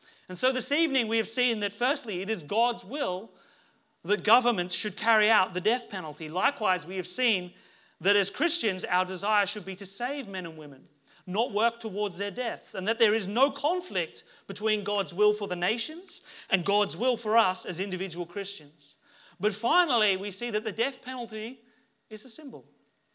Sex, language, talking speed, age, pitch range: male, English, 190 wpm, 30-49, 175-230 Hz